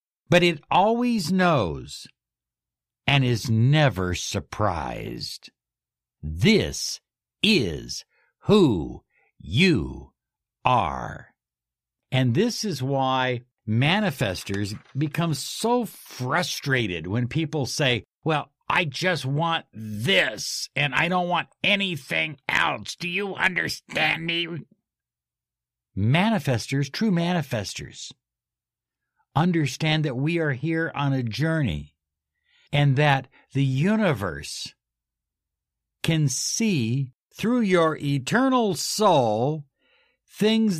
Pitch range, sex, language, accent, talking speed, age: 125-175 Hz, male, English, American, 90 wpm, 60-79